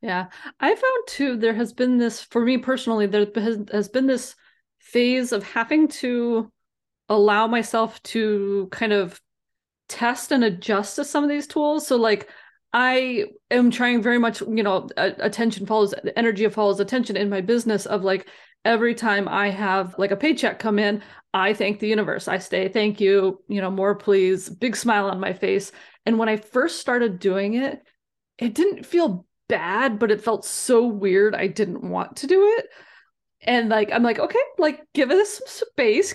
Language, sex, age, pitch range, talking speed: English, female, 20-39, 205-255 Hz, 185 wpm